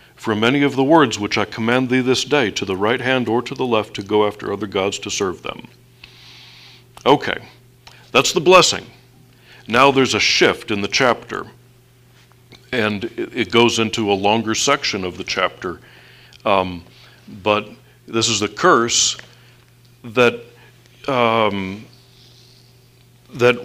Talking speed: 140 wpm